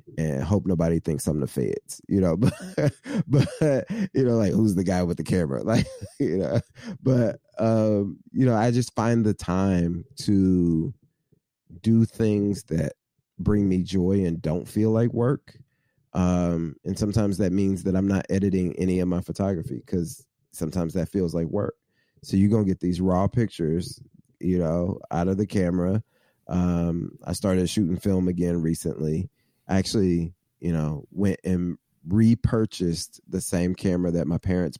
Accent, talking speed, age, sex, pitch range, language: American, 165 wpm, 30-49, male, 90-110 Hz, English